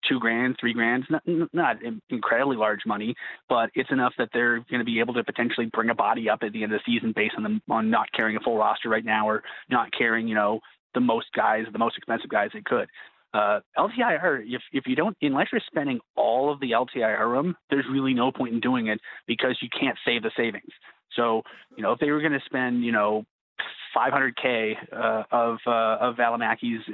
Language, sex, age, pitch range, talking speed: English, male, 30-49, 115-135 Hz, 220 wpm